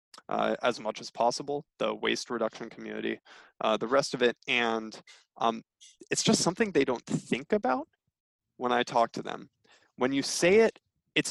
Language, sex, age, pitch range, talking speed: English, male, 20-39, 120-165 Hz, 175 wpm